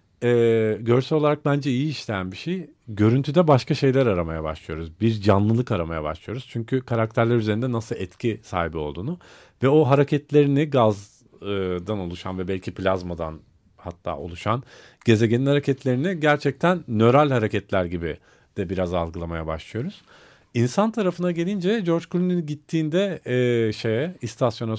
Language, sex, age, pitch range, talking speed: Turkish, male, 40-59, 95-140 Hz, 130 wpm